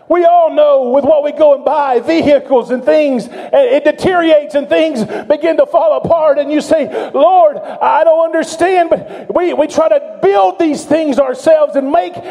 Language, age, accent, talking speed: English, 40-59, American, 185 wpm